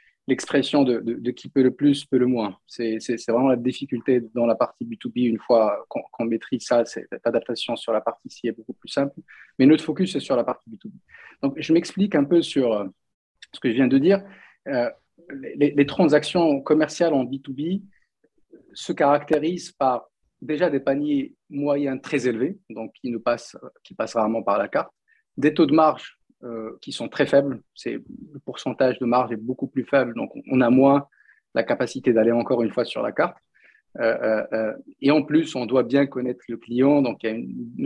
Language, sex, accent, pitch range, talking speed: French, male, French, 120-155 Hz, 205 wpm